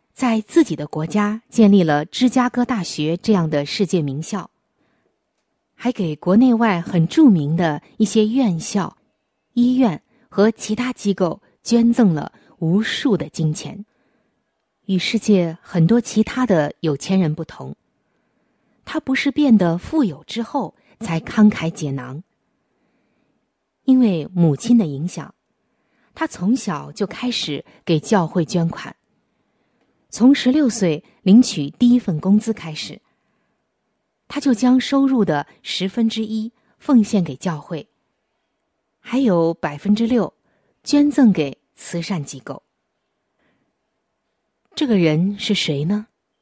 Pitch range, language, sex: 165-240 Hz, Chinese, female